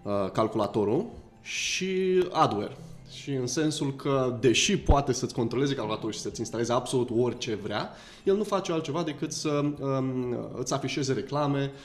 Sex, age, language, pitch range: male, 20-39, Romanian, 110-140 Hz